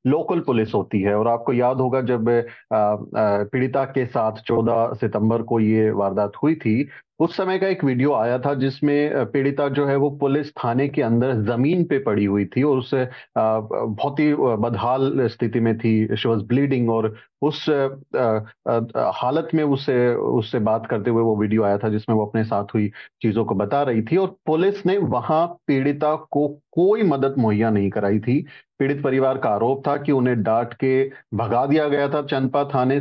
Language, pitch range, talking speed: Hindi, 115-145 Hz, 180 wpm